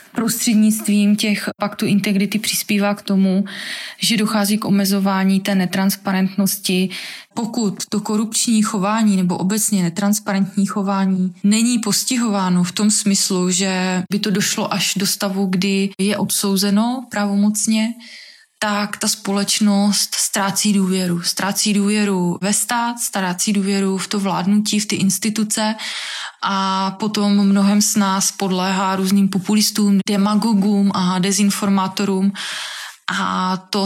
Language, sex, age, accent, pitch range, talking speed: Czech, female, 20-39, native, 190-210 Hz, 120 wpm